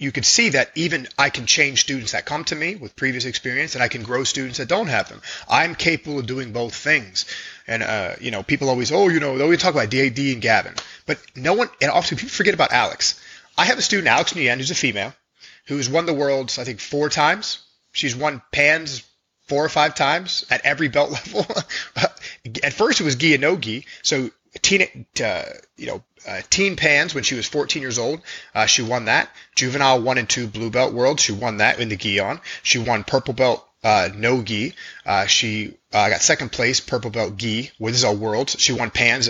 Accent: American